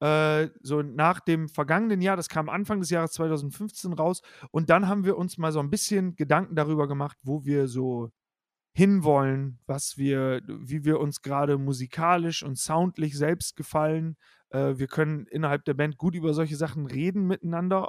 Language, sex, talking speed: German, male, 170 wpm